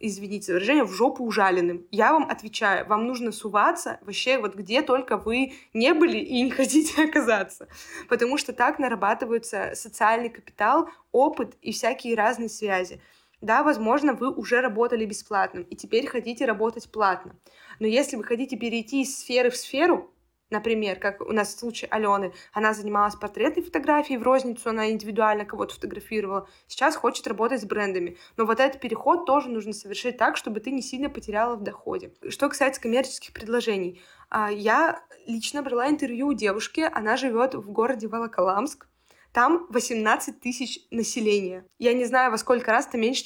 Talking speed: 160 wpm